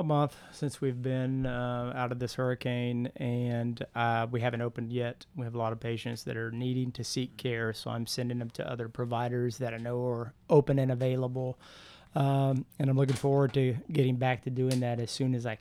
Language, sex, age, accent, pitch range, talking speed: English, male, 30-49, American, 120-135 Hz, 215 wpm